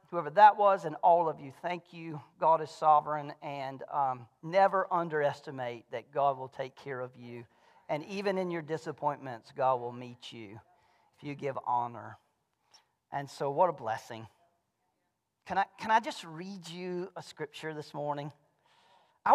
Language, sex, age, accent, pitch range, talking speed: English, male, 40-59, American, 155-255 Hz, 160 wpm